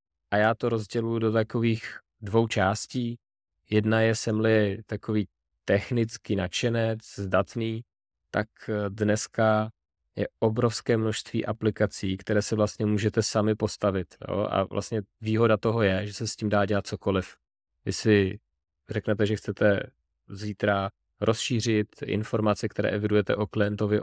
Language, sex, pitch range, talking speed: Czech, male, 100-110 Hz, 125 wpm